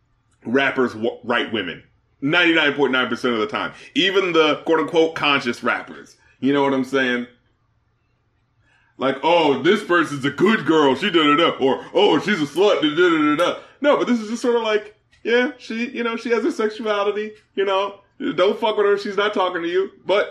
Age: 30-49